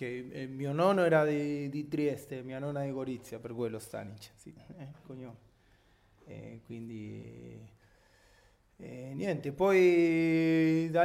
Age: 20-39